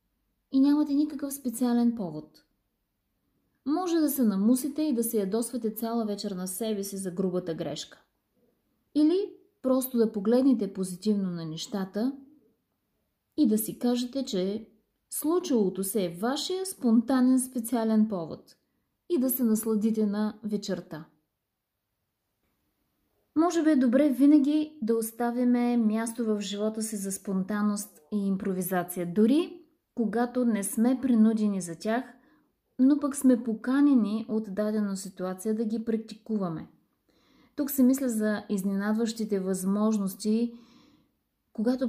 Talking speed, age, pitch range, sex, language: 120 wpm, 20-39, 200-250 Hz, female, Bulgarian